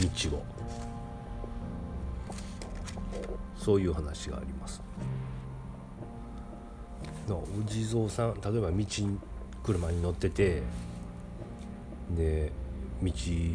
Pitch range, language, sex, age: 70-95 Hz, Japanese, male, 40-59